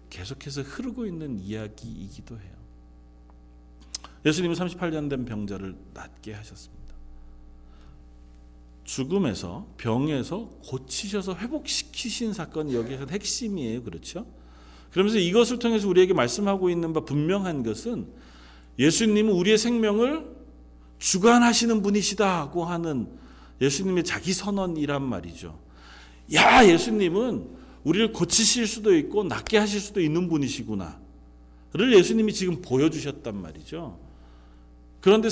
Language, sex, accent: Korean, male, native